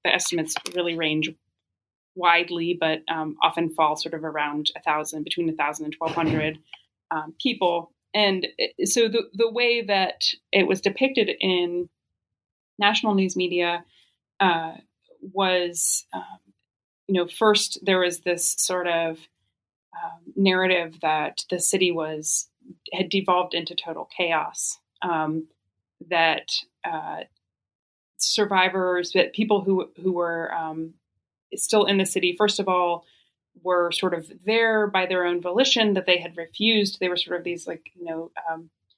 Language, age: English, 30-49